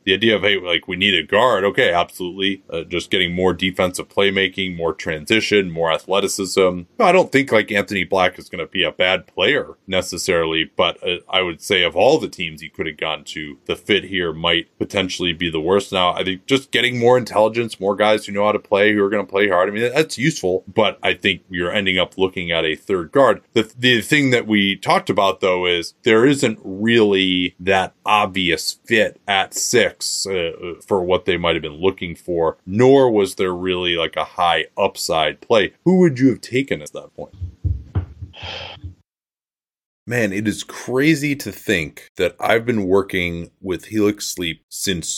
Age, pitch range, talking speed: 30-49, 90-110 Hz, 200 wpm